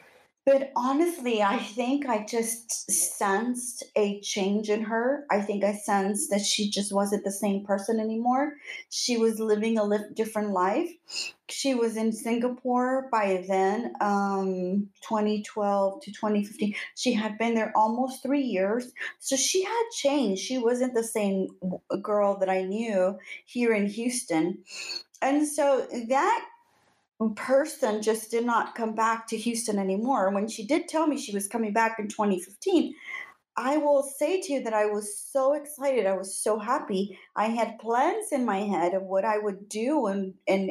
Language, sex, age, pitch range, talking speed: English, female, 30-49, 200-255 Hz, 165 wpm